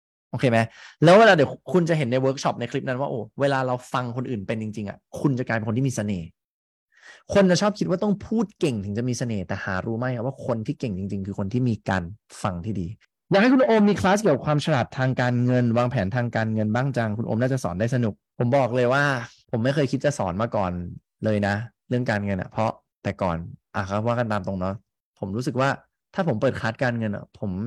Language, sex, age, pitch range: English, male, 20-39, 110-145 Hz